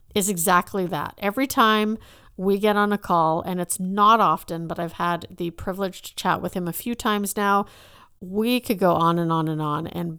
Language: English